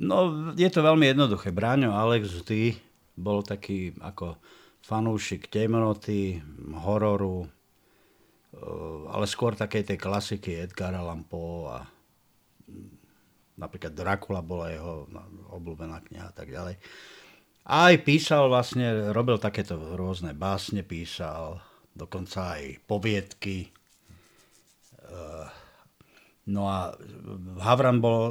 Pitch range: 95-115 Hz